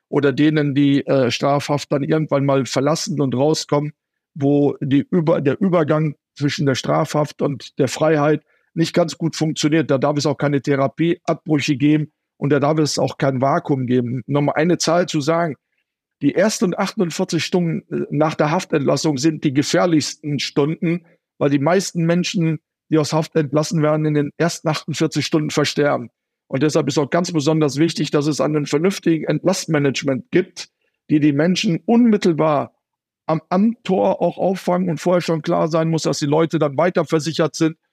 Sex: male